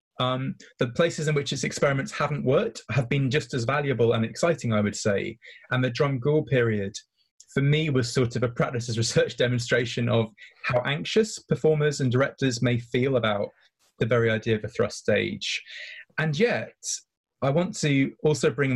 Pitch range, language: 120-150 Hz, English